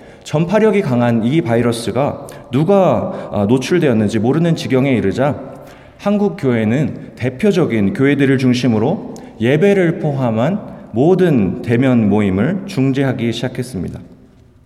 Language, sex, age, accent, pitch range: Korean, male, 30-49, native, 115-180 Hz